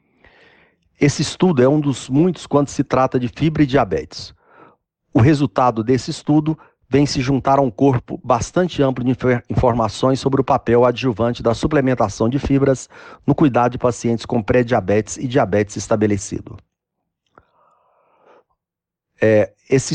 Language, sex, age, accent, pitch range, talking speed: Portuguese, male, 40-59, Brazilian, 120-145 Hz, 135 wpm